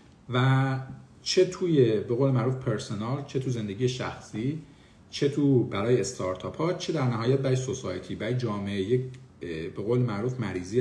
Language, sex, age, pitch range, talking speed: Persian, male, 50-69, 105-140 Hz, 155 wpm